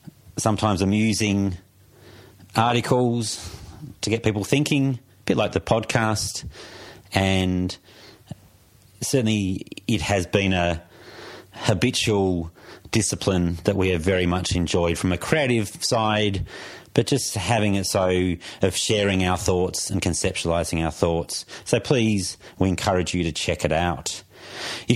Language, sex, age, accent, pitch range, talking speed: English, male, 30-49, Australian, 90-110 Hz, 125 wpm